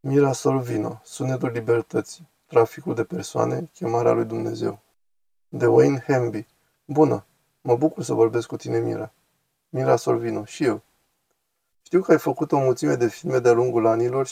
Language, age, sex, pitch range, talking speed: Romanian, 20-39, male, 120-155 Hz, 150 wpm